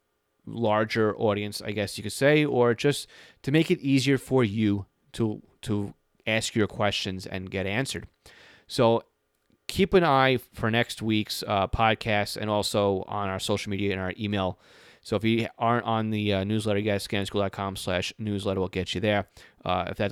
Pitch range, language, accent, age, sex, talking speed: 100-125 Hz, English, American, 30-49, male, 180 wpm